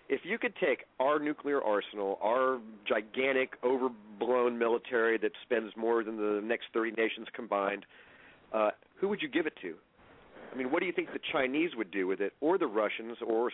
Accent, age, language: American, 50-69, English